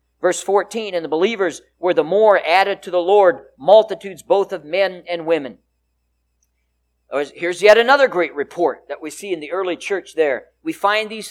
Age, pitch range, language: 50-69, 170-235 Hz, English